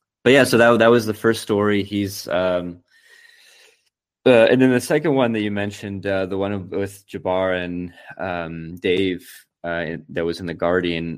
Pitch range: 80-95 Hz